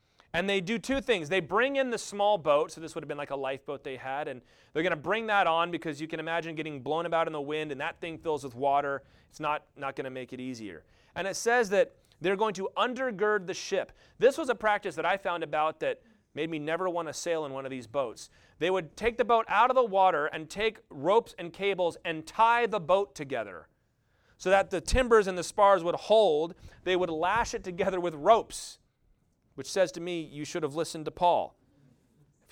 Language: English